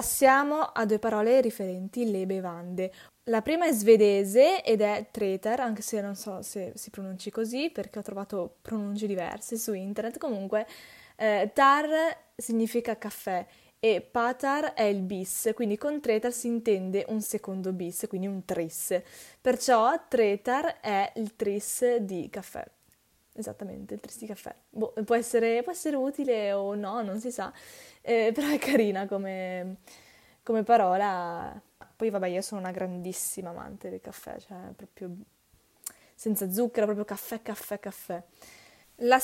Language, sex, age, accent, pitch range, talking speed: Italian, female, 10-29, native, 200-245 Hz, 145 wpm